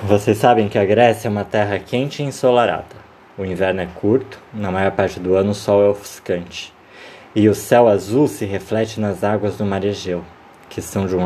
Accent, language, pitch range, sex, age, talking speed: Brazilian, Portuguese, 100-130 Hz, male, 20-39, 210 wpm